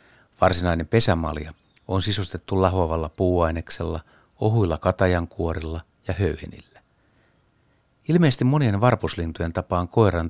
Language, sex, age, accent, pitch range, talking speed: Finnish, male, 60-79, native, 80-105 Hz, 95 wpm